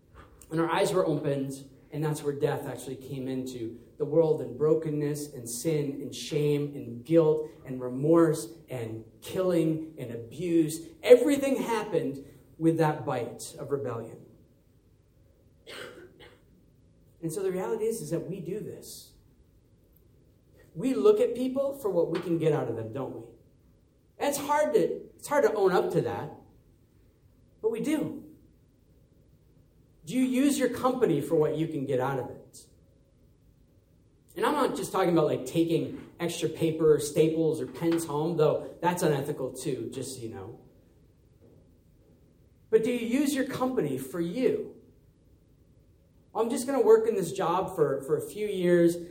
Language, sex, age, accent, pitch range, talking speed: English, male, 40-59, American, 145-195 Hz, 155 wpm